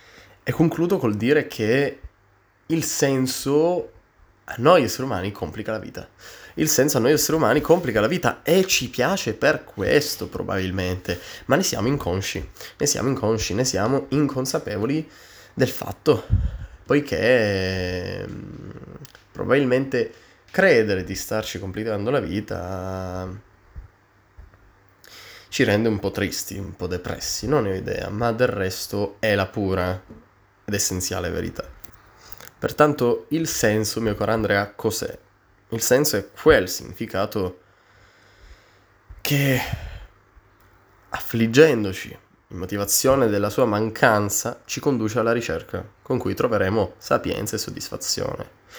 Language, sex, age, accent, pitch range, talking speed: Italian, male, 20-39, native, 95-120 Hz, 120 wpm